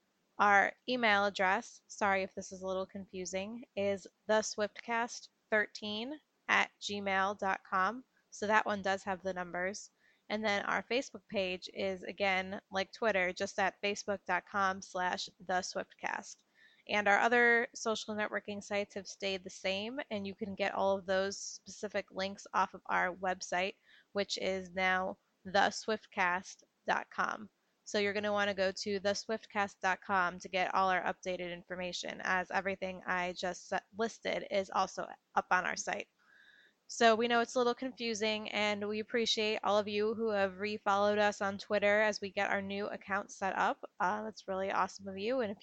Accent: American